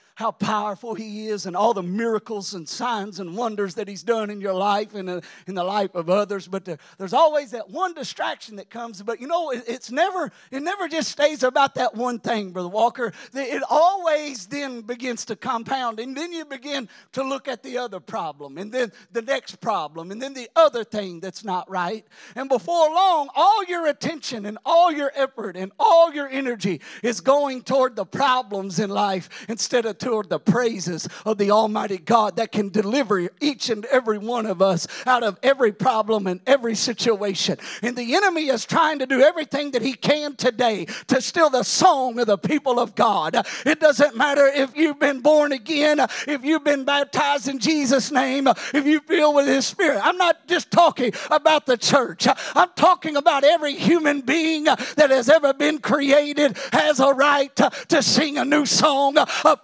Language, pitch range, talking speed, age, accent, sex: English, 215-290 Hz, 195 wpm, 40-59, American, male